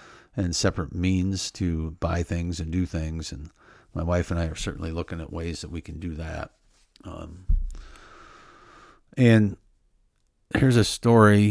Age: 50-69